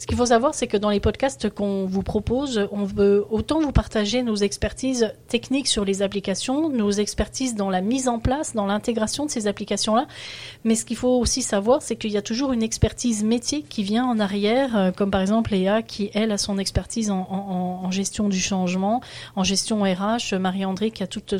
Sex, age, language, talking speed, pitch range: female, 30-49, French, 215 wpm, 190-225 Hz